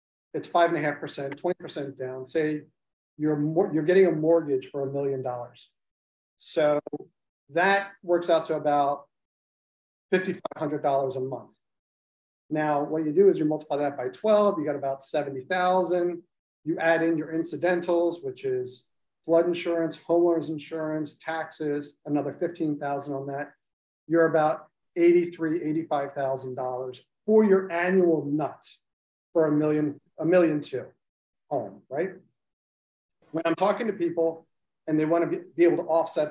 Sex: male